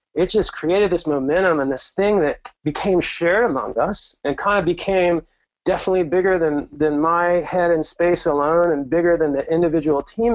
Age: 30-49